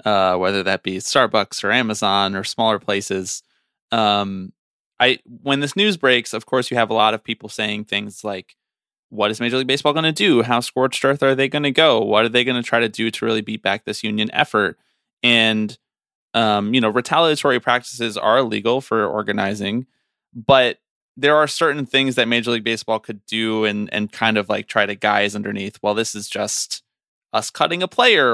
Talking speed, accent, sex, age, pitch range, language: 205 wpm, American, male, 20-39, 105-130 Hz, English